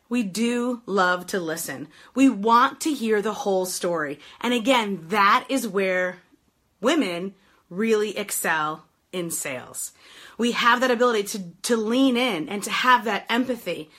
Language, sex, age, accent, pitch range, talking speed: English, female, 30-49, American, 210-270 Hz, 150 wpm